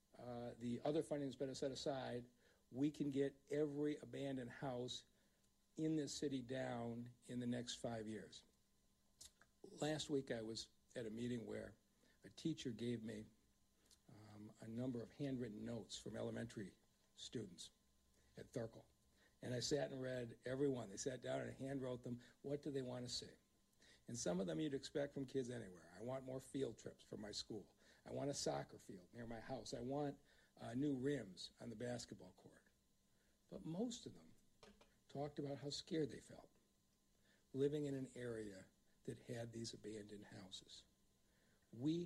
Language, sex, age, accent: English, male, 60-79, American